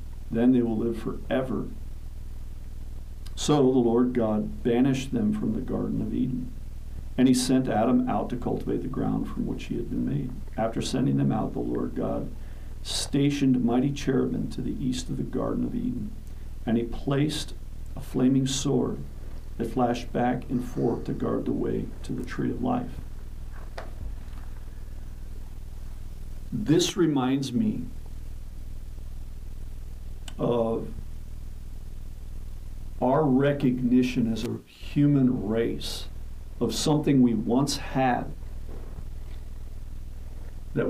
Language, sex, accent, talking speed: English, male, American, 125 wpm